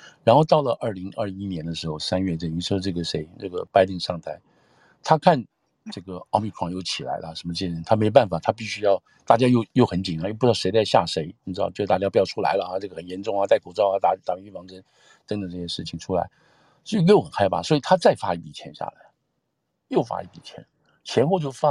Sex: male